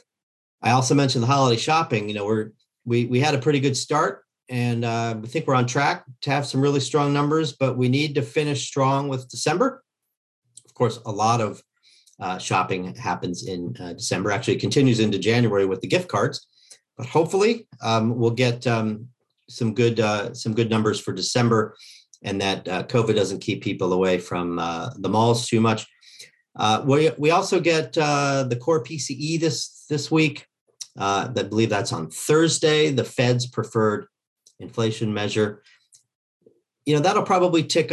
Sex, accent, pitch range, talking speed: male, American, 115-150 Hz, 180 wpm